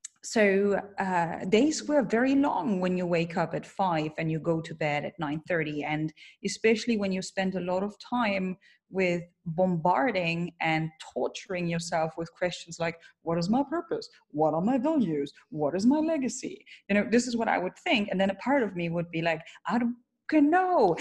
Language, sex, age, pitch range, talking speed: English, female, 30-49, 180-265 Hz, 195 wpm